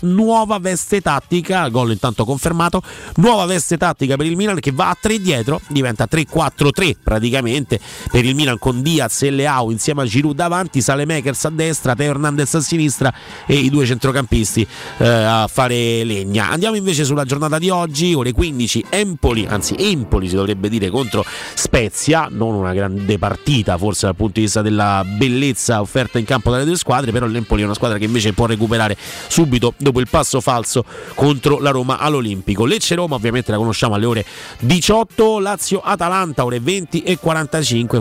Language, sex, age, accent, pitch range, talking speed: Italian, male, 30-49, native, 115-160 Hz, 175 wpm